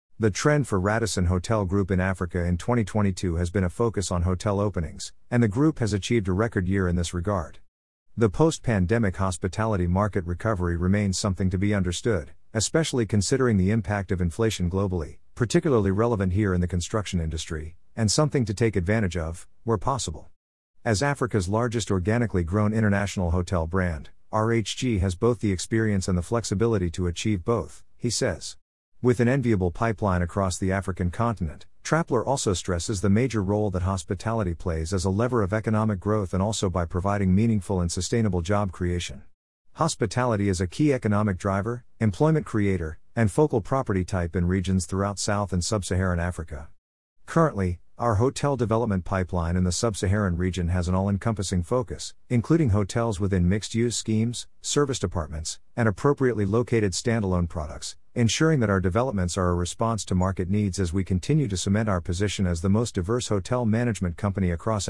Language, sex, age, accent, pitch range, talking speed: English, male, 50-69, American, 90-115 Hz, 170 wpm